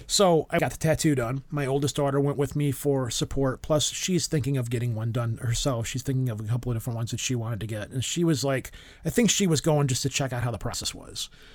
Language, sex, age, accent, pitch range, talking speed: English, male, 30-49, American, 130-155 Hz, 270 wpm